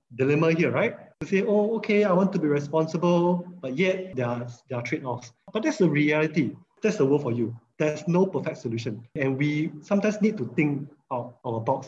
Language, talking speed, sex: English, 205 wpm, male